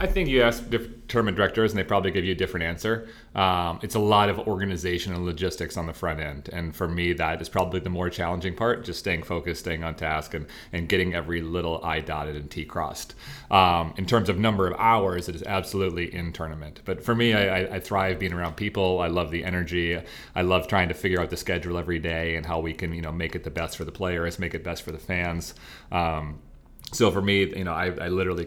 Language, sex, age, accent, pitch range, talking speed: English, male, 30-49, American, 80-95 Hz, 240 wpm